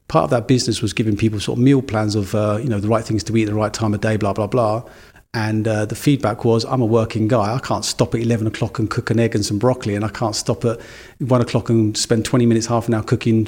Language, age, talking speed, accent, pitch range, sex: English, 40-59, 295 wpm, British, 110-135 Hz, male